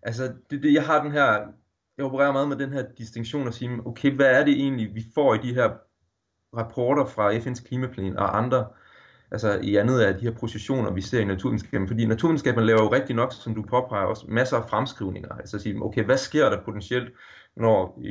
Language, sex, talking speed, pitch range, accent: Danish, male, 215 wpm, 105-130 Hz, native